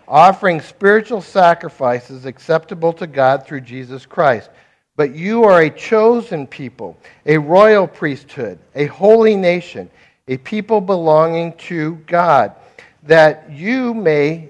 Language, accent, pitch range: English, American, 150-195 Hz